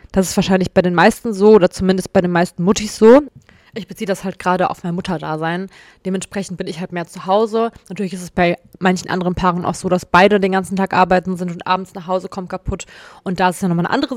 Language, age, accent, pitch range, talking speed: German, 20-39, German, 180-220 Hz, 245 wpm